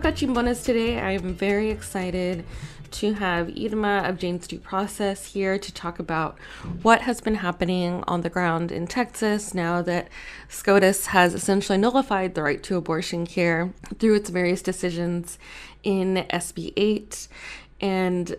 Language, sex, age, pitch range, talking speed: English, female, 20-39, 175-210 Hz, 135 wpm